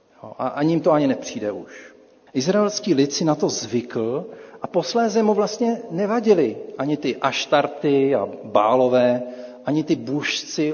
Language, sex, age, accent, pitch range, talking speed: Czech, male, 40-59, native, 125-175 Hz, 145 wpm